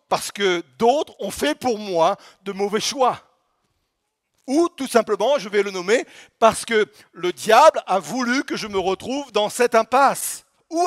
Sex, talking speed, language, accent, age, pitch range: male, 170 wpm, French, French, 50-69, 205-260 Hz